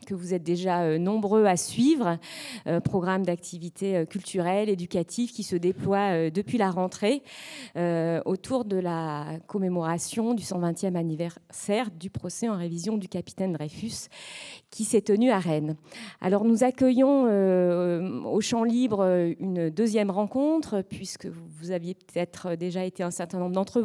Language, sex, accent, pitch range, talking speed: French, female, French, 175-225 Hz, 150 wpm